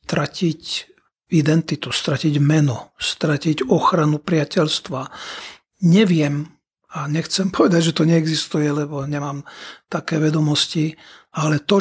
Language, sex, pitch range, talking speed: Czech, male, 150-170 Hz, 100 wpm